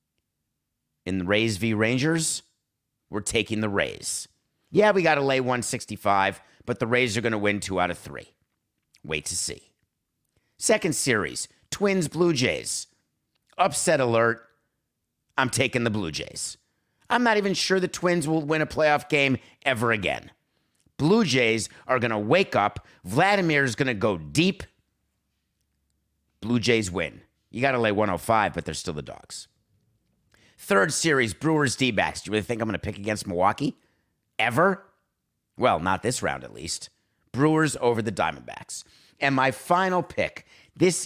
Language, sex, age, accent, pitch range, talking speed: English, male, 50-69, American, 105-150 Hz, 160 wpm